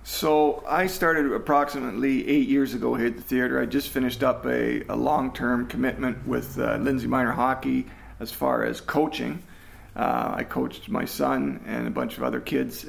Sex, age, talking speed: male, 40-59, 180 wpm